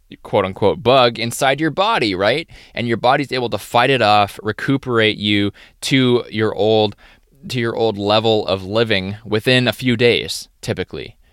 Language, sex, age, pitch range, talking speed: English, male, 20-39, 100-120 Hz, 165 wpm